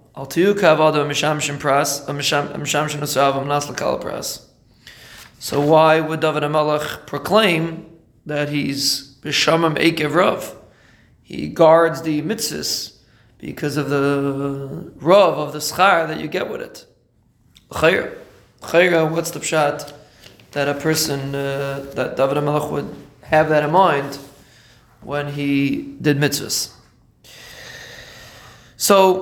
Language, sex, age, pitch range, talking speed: English, male, 20-39, 145-180 Hz, 95 wpm